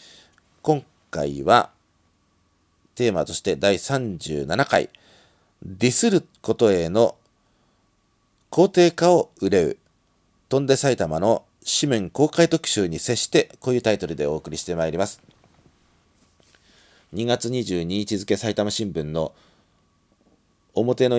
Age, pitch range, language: 40-59, 85-125 Hz, Japanese